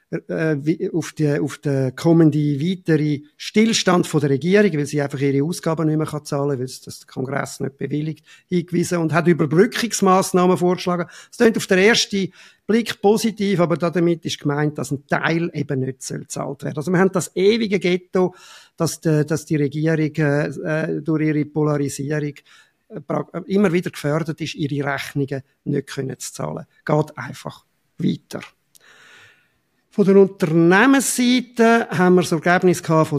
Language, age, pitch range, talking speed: German, 50-69, 145-190 Hz, 155 wpm